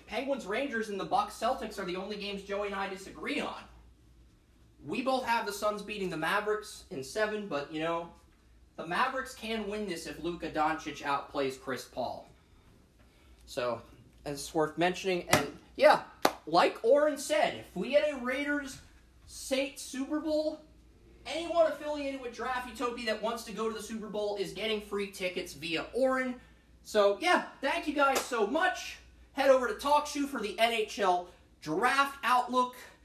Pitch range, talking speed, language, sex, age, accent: 175-255 Hz, 165 wpm, English, male, 30-49, American